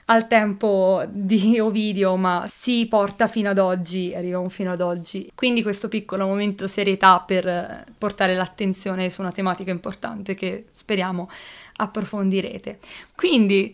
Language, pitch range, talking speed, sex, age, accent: Italian, 195-255 Hz, 130 wpm, female, 20-39, native